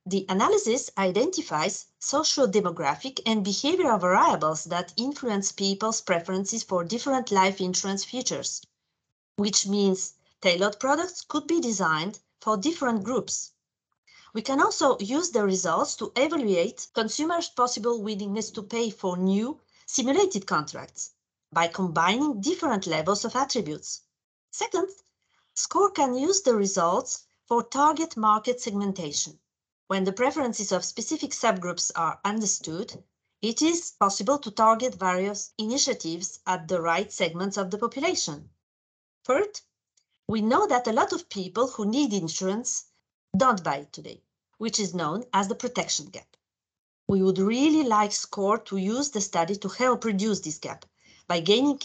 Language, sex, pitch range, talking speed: English, female, 190-250 Hz, 140 wpm